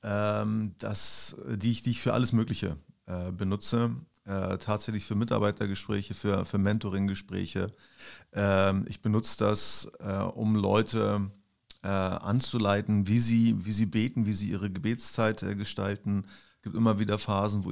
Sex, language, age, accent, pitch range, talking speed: male, German, 30-49, German, 100-110 Hz, 115 wpm